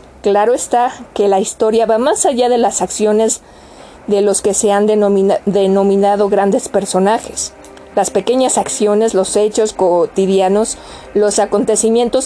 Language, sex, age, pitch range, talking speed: Spanish, female, 40-59, 200-230 Hz, 130 wpm